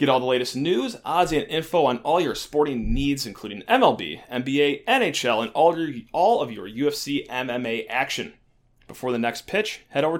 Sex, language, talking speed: male, English, 180 wpm